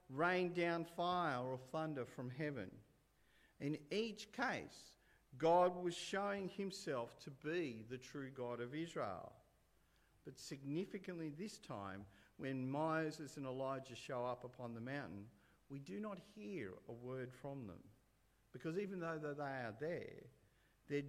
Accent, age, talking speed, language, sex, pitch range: Australian, 50-69, 140 wpm, English, male, 130-175 Hz